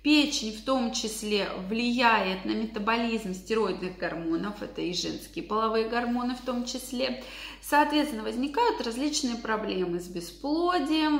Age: 20-39